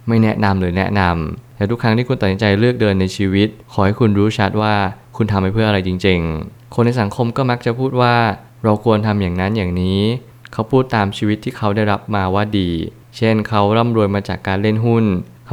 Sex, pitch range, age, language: male, 95-115 Hz, 20-39, Thai